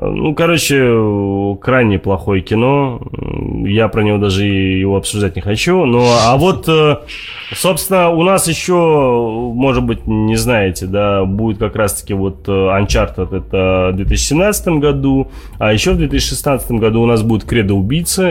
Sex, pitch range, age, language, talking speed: male, 95-120 Hz, 20-39, Russian, 145 wpm